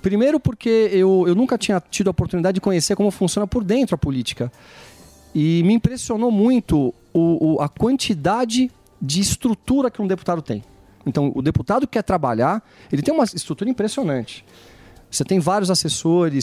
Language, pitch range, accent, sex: Portuguese, 145-200 Hz, Brazilian, male